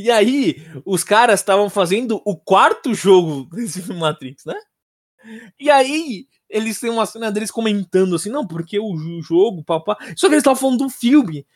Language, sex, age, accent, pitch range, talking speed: Portuguese, male, 20-39, Brazilian, 170-250 Hz, 180 wpm